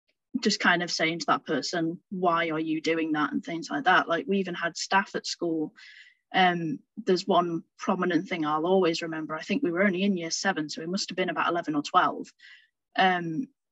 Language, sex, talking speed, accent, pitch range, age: English, female, 210 wpm, British, 170-210 Hz, 20-39